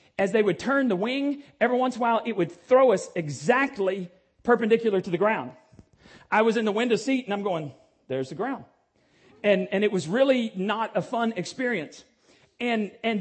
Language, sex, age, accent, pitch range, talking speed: English, male, 40-59, American, 210-260 Hz, 195 wpm